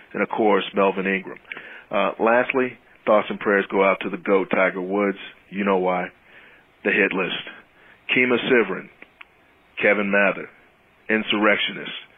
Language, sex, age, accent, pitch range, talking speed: English, male, 40-59, American, 100-120 Hz, 140 wpm